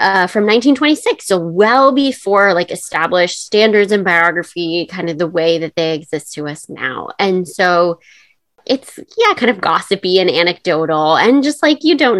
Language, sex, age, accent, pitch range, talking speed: English, female, 20-39, American, 160-210 Hz, 170 wpm